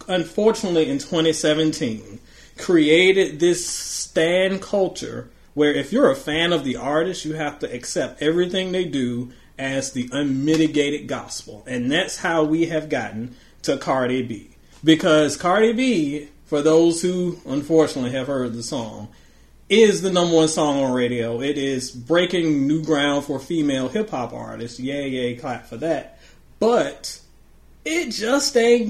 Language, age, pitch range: English, 30-49, 135-180 Hz